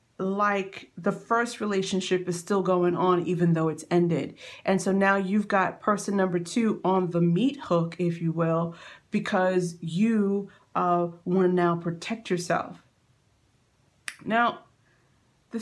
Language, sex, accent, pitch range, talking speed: English, female, American, 170-210 Hz, 140 wpm